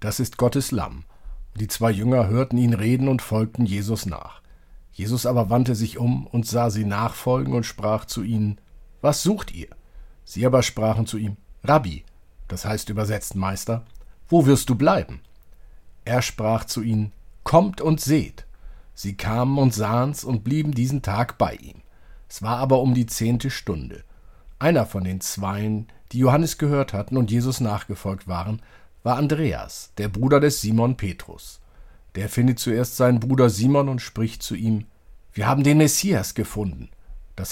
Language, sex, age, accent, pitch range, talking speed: German, male, 50-69, German, 100-130 Hz, 165 wpm